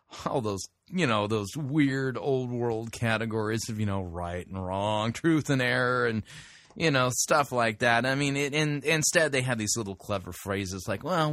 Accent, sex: American, male